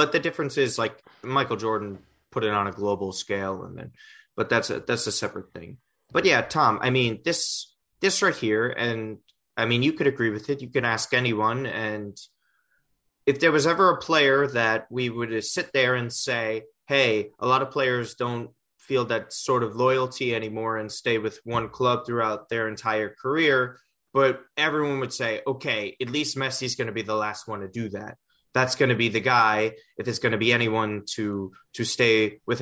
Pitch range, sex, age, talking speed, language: 105-130 Hz, male, 30-49, 205 wpm, English